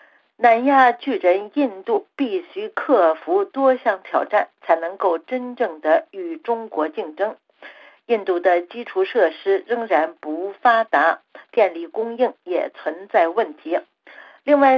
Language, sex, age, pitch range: Chinese, female, 50-69, 180-280 Hz